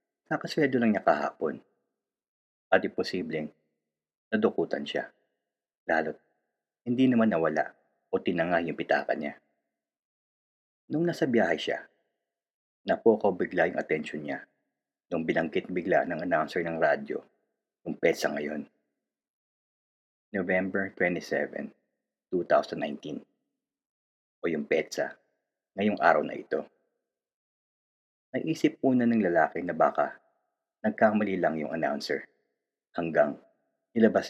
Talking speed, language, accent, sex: 105 wpm, Filipino, native, male